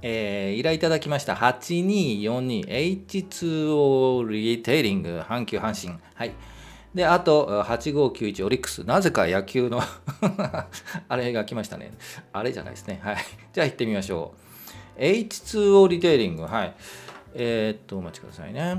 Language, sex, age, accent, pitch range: Japanese, male, 40-59, native, 115-170 Hz